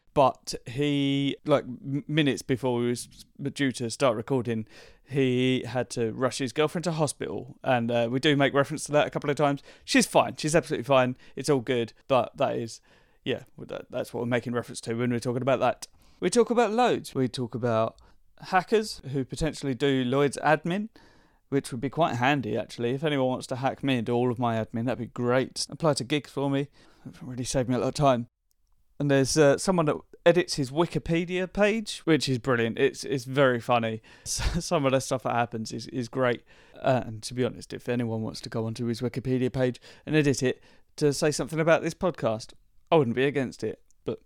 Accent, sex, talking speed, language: British, male, 210 wpm, English